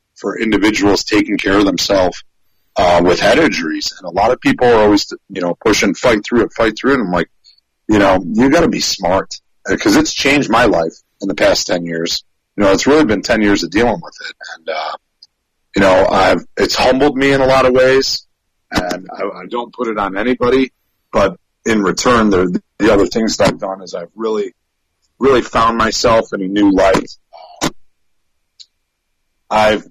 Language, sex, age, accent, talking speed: English, male, 40-59, American, 200 wpm